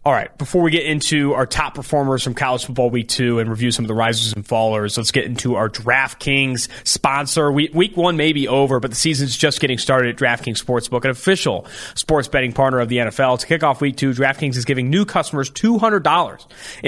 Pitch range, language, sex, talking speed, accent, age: 125-150 Hz, English, male, 215 wpm, American, 30-49